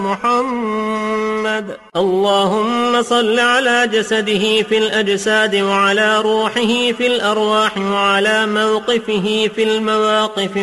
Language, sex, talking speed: Indonesian, male, 85 wpm